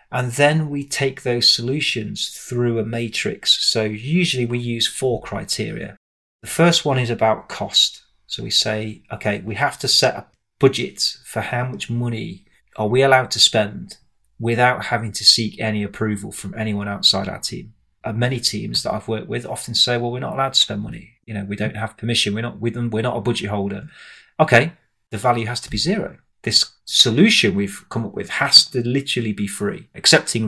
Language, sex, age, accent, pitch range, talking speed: English, male, 30-49, British, 105-125 Hz, 200 wpm